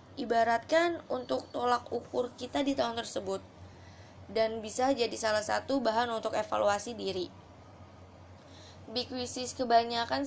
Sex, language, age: female, Indonesian, 20-39